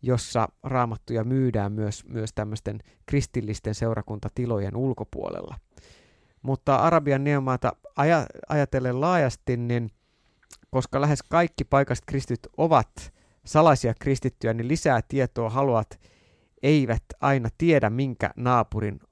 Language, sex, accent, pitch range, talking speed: Finnish, male, native, 110-140 Hz, 105 wpm